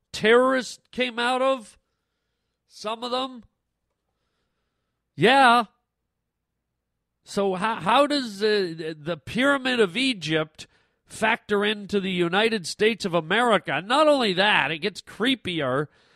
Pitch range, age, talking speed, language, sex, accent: 170-225 Hz, 40-59, 110 wpm, English, male, American